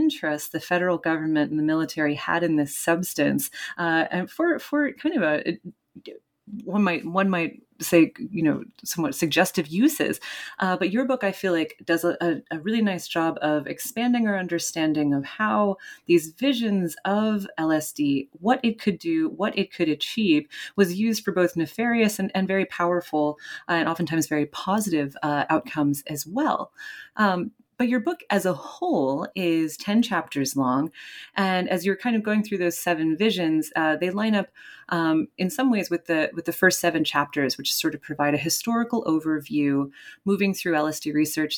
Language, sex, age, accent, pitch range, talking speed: English, female, 30-49, American, 155-210 Hz, 175 wpm